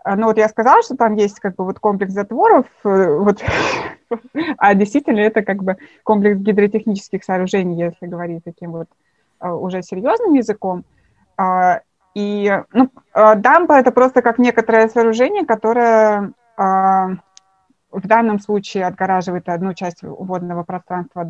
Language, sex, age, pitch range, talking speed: Russian, female, 20-39, 185-220 Hz, 130 wpm